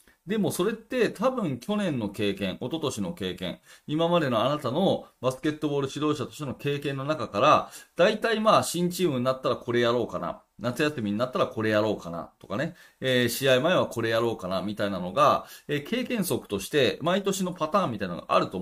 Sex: male